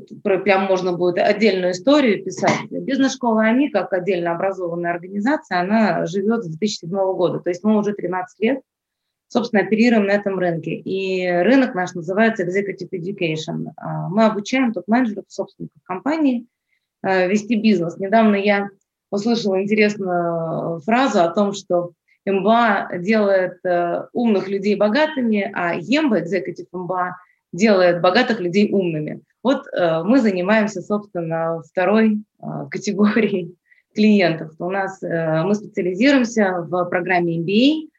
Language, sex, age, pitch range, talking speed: Russian, female, 20-39, 180-220 Hz, 120 wpm